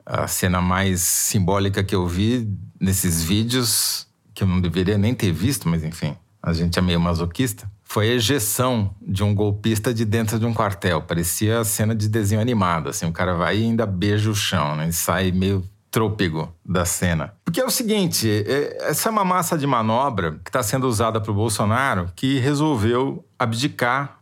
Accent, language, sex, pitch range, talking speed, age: Brazilian, Portuguese, male, 100-135 Hz, 190 wpm, 40-59